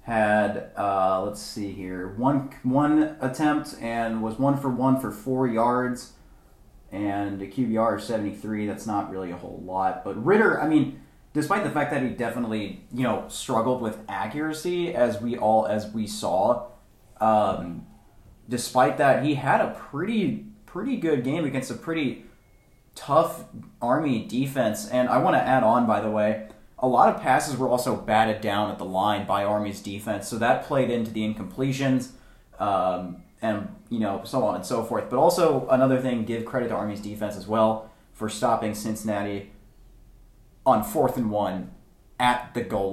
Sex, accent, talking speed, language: male, American, 170 wpm, English